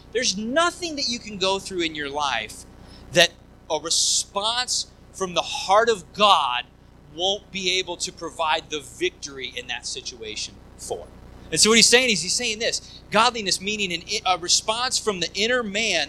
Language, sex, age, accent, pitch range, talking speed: English, male, 30-49, American, 175-235 Hz, 175 wpm